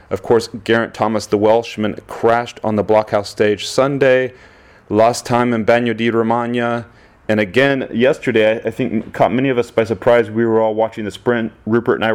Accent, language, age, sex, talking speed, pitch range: American, English, 30-49, male, 190 wpm, 105-120 Hz